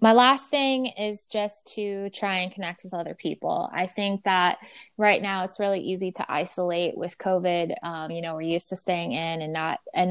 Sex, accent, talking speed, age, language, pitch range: female, American, 210 wpm, 10-29, English, 185-225 Hz